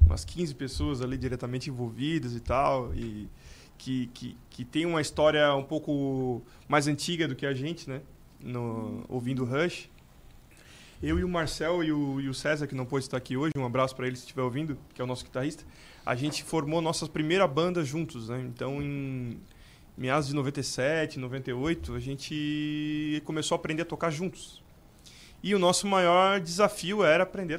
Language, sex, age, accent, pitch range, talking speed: Portuguese, male, 20-39, Brazilian, 130-165 Hz, 180 wpm